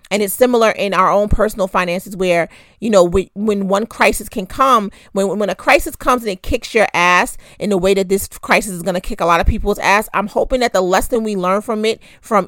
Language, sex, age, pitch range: English, female, 30-49, 190-220 Hz